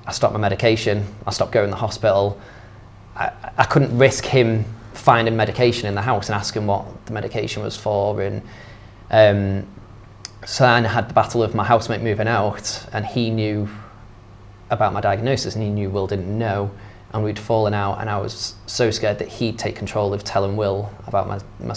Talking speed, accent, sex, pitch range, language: 195 wpm, British, male, 100-110 Hz, English